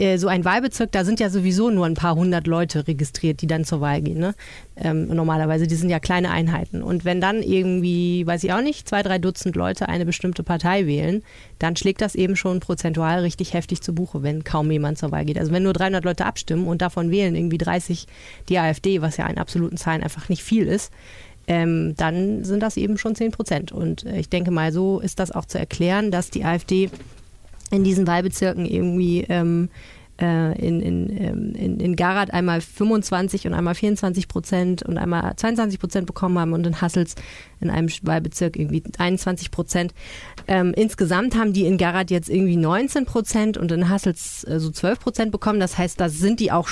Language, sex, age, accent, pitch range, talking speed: German, female, 30-49, German, 165-190 Hz, 200 wpm